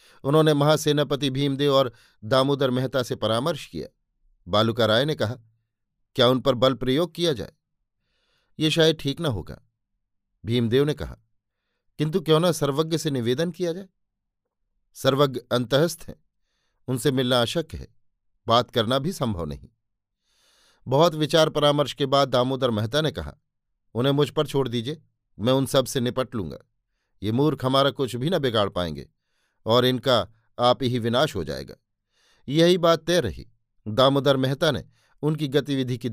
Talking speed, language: 155 wpm, Hindi